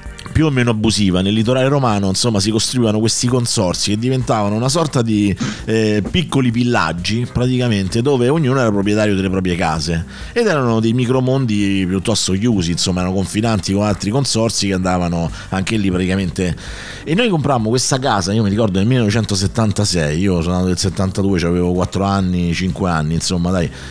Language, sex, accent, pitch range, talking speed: Italian, male, native, 95-120 Hz, 170 wpm